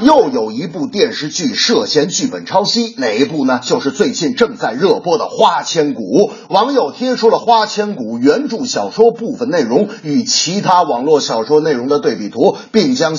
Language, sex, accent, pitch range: Chinese, male, native, 200-255 Hz